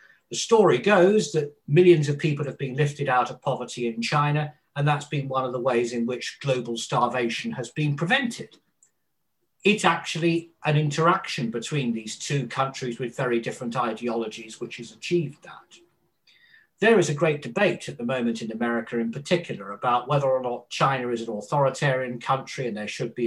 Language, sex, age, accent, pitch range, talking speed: English, male, 50-69, British, 125-185 Hz, 180 wpm